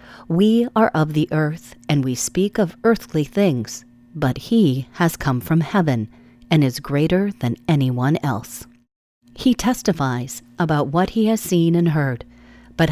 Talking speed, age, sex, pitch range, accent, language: 155 wpm, 40-59, female, 130-185 Hz, American, English